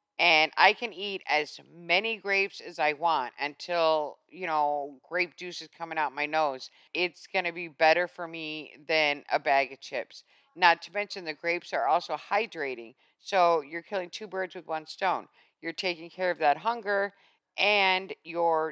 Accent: American